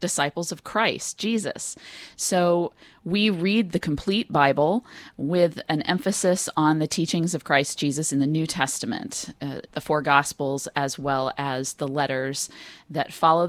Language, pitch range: English, 150-185 Hz